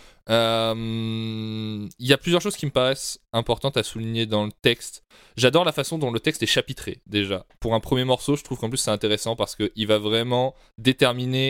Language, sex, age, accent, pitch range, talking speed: French, male, 20-39, French, 100-125 Hz, 205 wpm